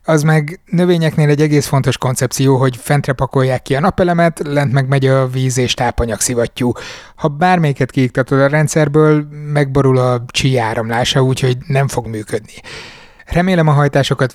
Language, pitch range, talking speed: Hungarian, 125-155 Hz, 150 wpm